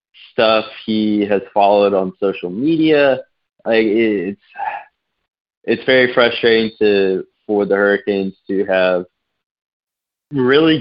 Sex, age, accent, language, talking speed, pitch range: male, 20-39, American, English, 110 wpm, 95-110 Hz